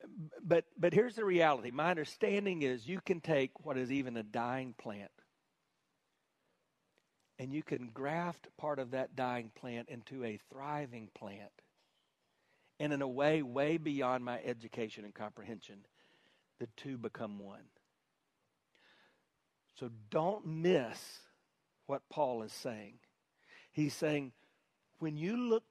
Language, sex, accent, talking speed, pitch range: English, male, American, 130 wpm, 140-230 Hz